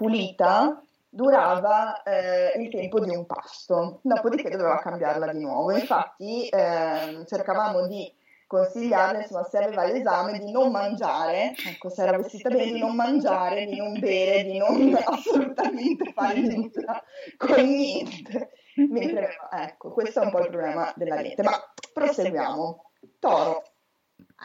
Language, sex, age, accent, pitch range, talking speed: Italian, female, 20-39, native, 190-290 Hz, 135 wpm